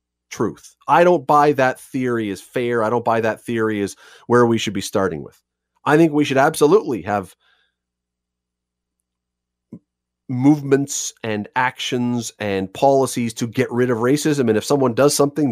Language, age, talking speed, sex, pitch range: English, 40-59, 160 wpm, male, 100-150 Hz